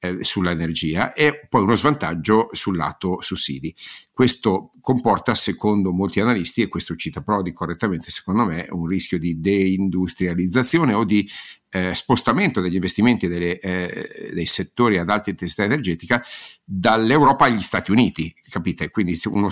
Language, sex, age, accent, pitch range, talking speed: Italian, male, 50-69, native, 95-110 Hz, 140 wpm